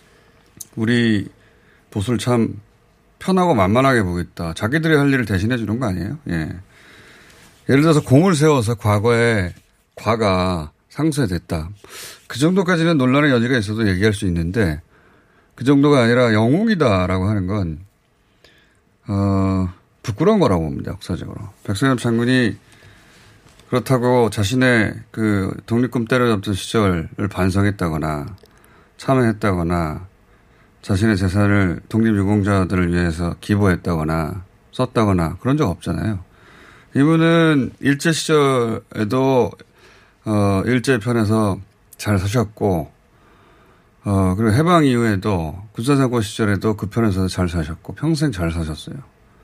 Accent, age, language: native, 30-49, Korean